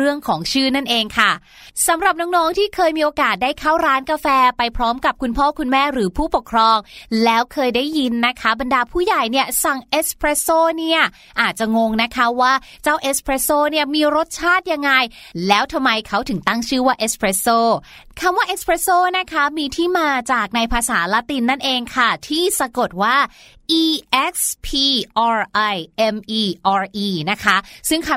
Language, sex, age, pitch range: Thai, female, 20-39, 215-290 Hz